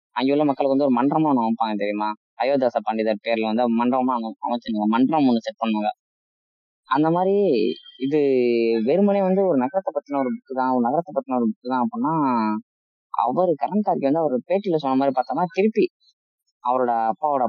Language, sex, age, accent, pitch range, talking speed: Tamil, female, 20-39, native, 110-135 Hz, 155 wpm